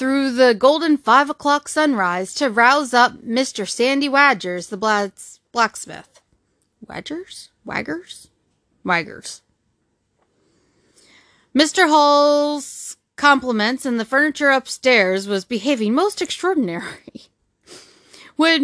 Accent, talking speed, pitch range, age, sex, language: American, 95 wpm, 220-295 Hz, 30-49, female, English